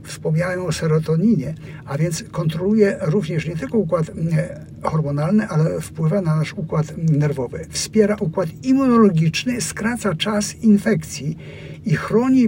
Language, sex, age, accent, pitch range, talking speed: Polish, male, 60-79, native, 155-205 Hz, 120 wpm